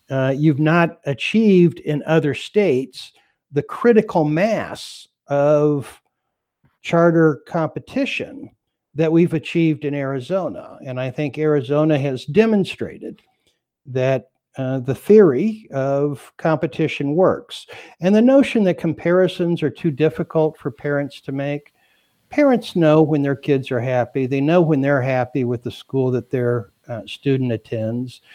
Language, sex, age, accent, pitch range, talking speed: English, male, 60-79, American, 130-160 Hz, 135 wpm